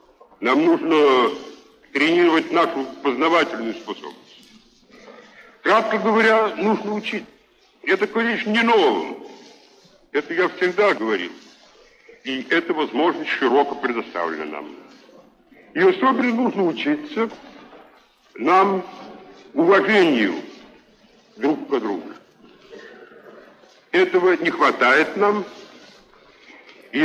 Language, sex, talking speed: Russian, male, 85 wpm